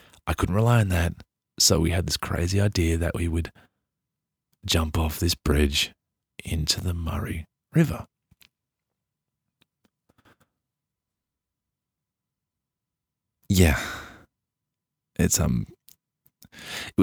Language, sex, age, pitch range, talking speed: English, male, 40-59, 85-105 Hz, 90 wpm